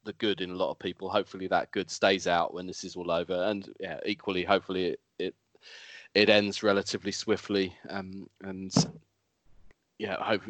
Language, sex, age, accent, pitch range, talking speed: English, male, 20-39, British, 95-120 Hz, 175 wpm